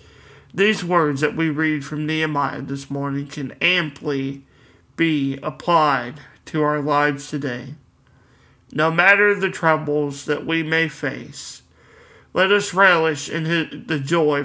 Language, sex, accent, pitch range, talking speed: English, male, American, 135-160 Hz, 130 wpm